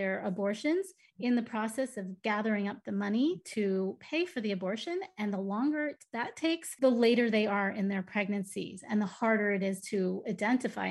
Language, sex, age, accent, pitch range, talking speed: English, female, 30-49, American, 195-235 Hz, 185 wpm